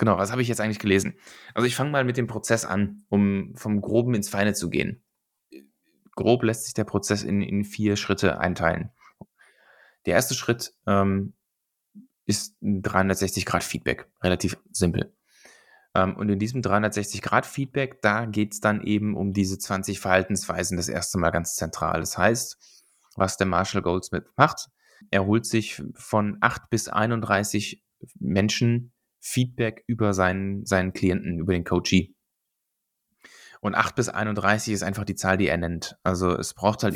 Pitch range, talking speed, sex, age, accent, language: 95-105 Hz, 160 wpm, male, 20-39, German, German